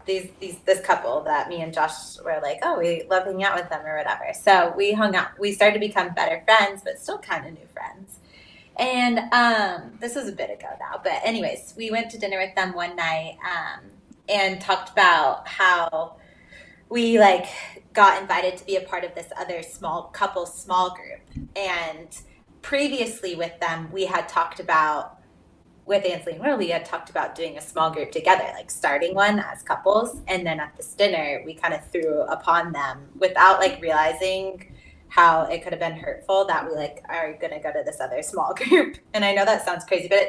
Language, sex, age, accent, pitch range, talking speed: English, female, 20-39, American, 170-205 Hz, 205 wpm